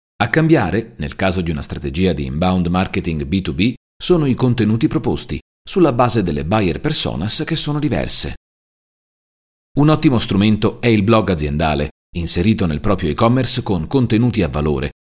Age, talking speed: 40-59, 150 wpm